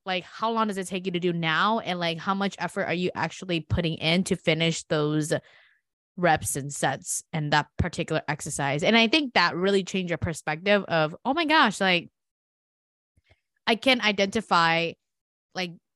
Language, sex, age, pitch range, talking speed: English, female, 20-39, 165-240 Hz, 175 wpm